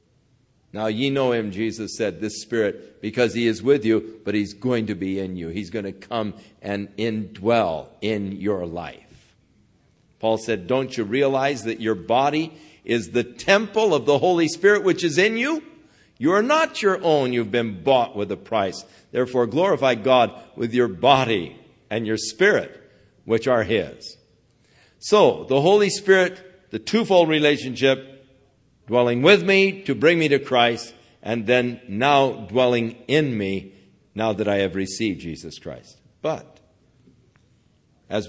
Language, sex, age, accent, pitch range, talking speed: English, male, 50-69, American, 105-135 Hz, 160 wpm